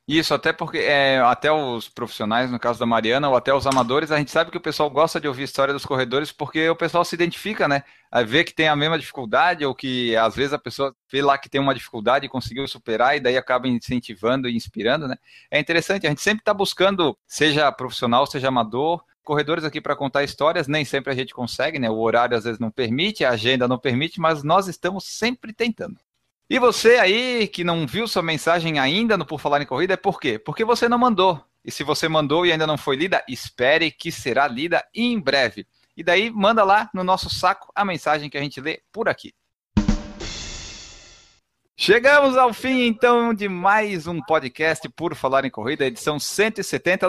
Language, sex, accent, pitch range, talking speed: Portuguese, male, Brazilian, 135-190 Hz, 210 wpm